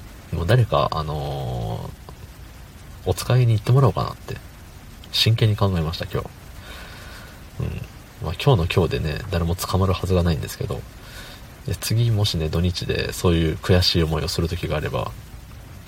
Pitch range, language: 85-115 Hz, Japanese